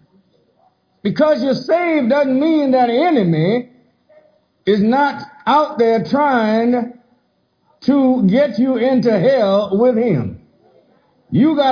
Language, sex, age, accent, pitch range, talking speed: English, male, 60-79, American, 225-285 Hz, 115 wpm